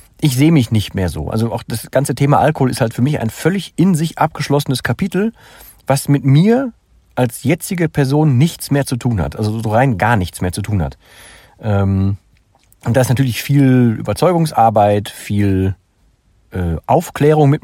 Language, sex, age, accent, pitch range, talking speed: German, male, 40-59, German, 110-145 Hz, 170 wpm